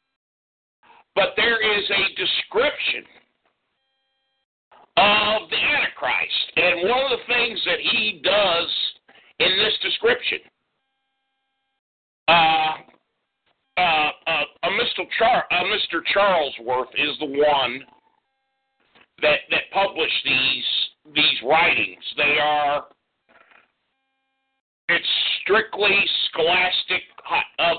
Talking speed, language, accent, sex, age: 95 wpm, English, American, male, 60-79